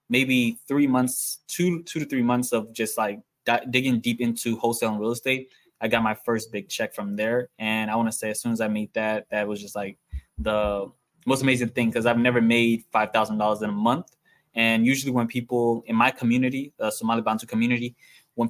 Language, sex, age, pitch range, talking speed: English, male, 20-39, 110-120 Hz, 210 wpm